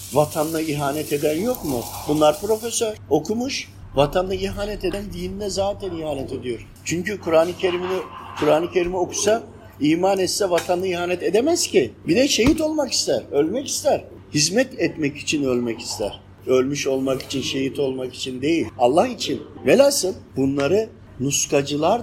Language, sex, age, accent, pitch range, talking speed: Turkish, male, 50-69, native, 140-215 Hz, 140 wpm